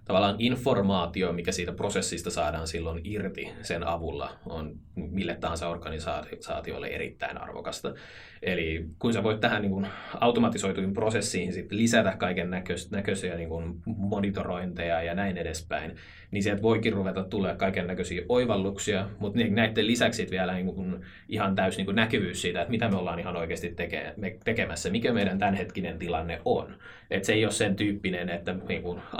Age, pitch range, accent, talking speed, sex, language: 20-39, 85-105 Hz, native, 155 wpm, male, Finnish